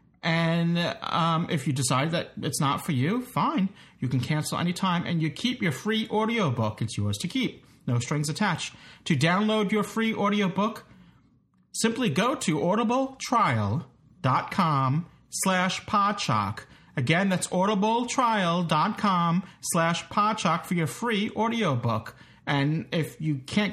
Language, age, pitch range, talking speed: English, 40-59, 135-190 Hz, 120 wpm